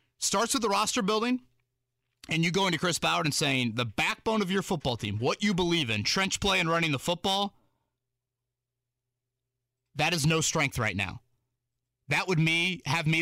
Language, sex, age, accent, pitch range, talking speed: English, male, 30-49, American, 120-150 Hz, 180 wpm